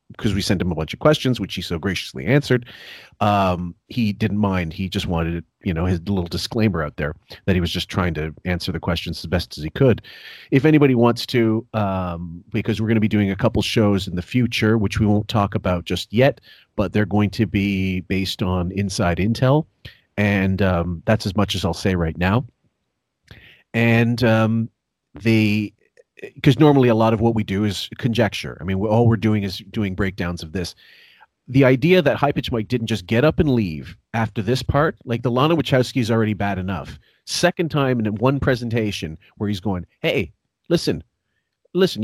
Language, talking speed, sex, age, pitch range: English, 205 wpm, male, 40-59, 95-120 Hz